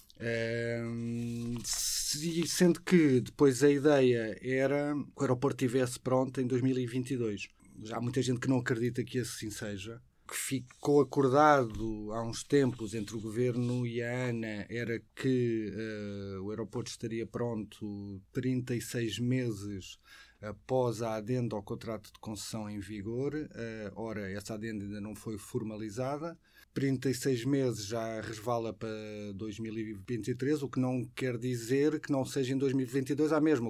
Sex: male